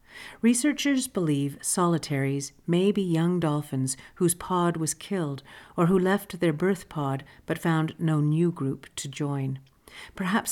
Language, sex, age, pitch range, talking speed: English, female, 50-69, 140-175 Hz, 145 wpm